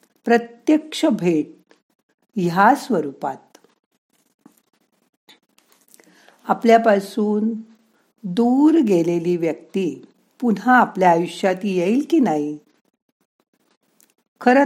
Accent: native